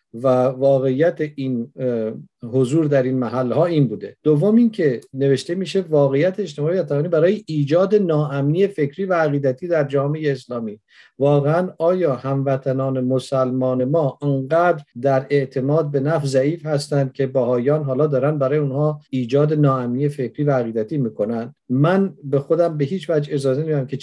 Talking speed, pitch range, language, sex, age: 145 wpm, 130-155 Hz, Persian, male, 50-69